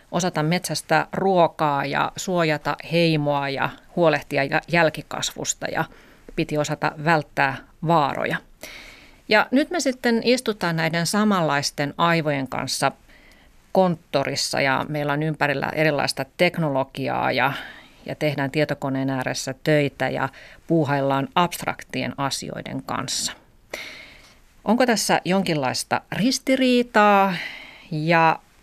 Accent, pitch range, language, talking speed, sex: native, 140-170 Hz, Finnish, 95 wpm, female